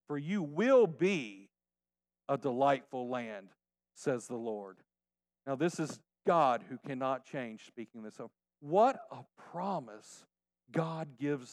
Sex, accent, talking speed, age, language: male, American, 130 wpm, 50-69, English